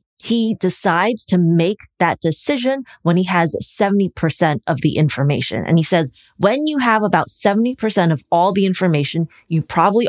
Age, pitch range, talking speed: 20-39, 165-210 Hz, 160 wpm